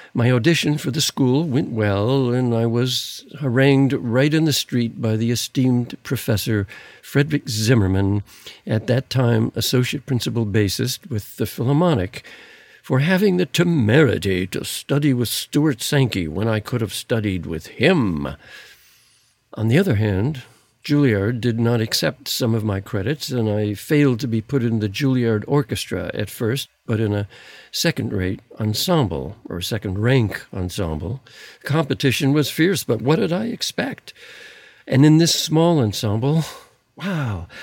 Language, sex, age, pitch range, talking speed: English, male, 60-79, 110-145 Hz, 150 wpm